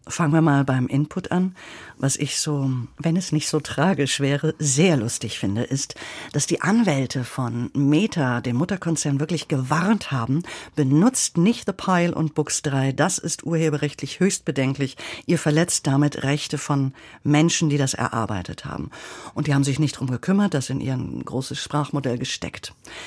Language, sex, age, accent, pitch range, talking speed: German, female, 50-69, German, 135-165 Hz, 165 wpm